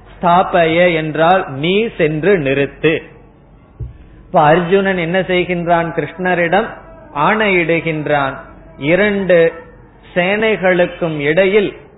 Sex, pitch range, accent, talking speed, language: male, 155-190 Hz, native, 65 wpm, Tamil